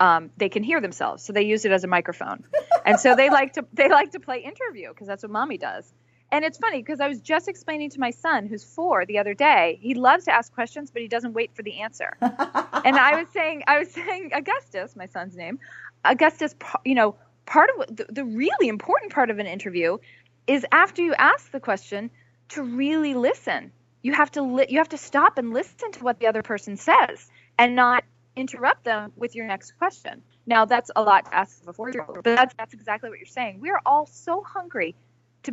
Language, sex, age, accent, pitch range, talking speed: English, female, 20-39, American, 195-285 Hz, 220 wpm